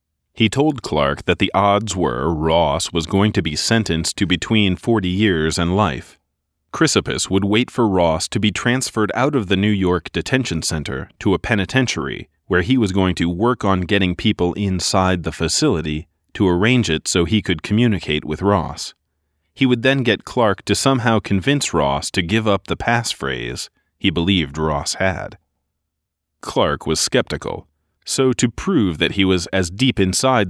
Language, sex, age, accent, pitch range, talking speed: English, male, 30-49, American, 80-115 Hz, 175 wpm